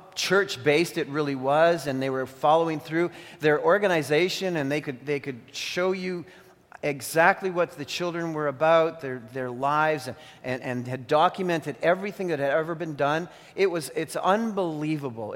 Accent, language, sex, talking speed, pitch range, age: American, English, male, 165 wpm, 130-160 Hz, 40-59